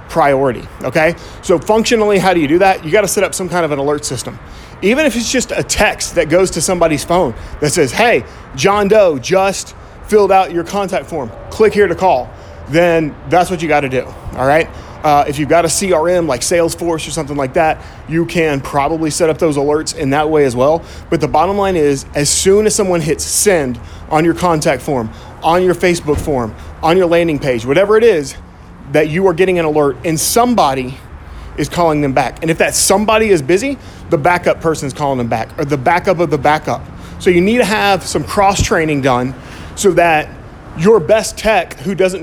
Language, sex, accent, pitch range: English, male, American, 140-185 Hz